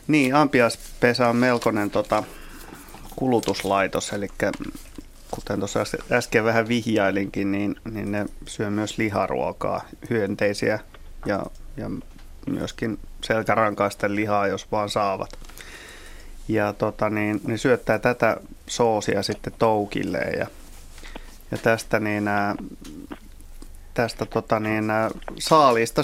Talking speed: 110 wpm